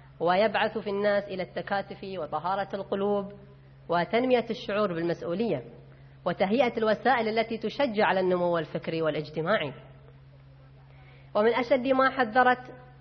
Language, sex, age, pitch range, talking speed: Arabic, female, 30-49, 160-225 Hz, 100 wpm